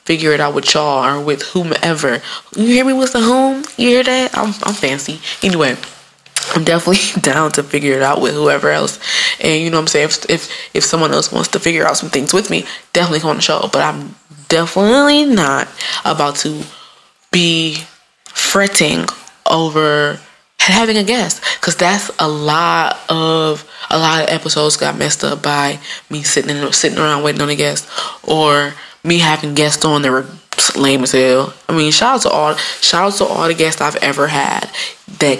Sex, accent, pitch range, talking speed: female, American, 145-170 Hz, 195 wpm